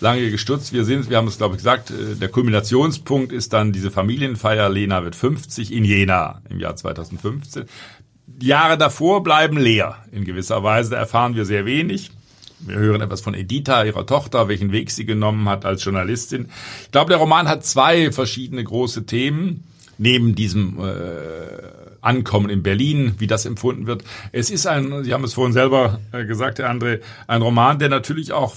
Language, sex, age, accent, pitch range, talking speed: German, male, 50-69, German, 105-130 Hz, 180 wpm